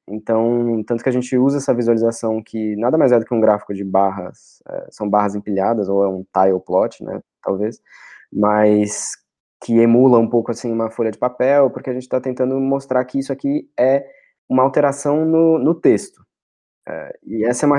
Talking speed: 190 wpm